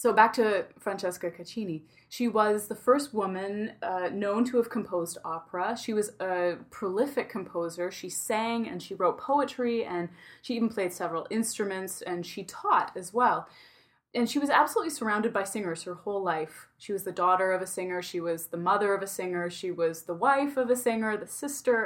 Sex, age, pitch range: female, 20-39, 180-230 Hz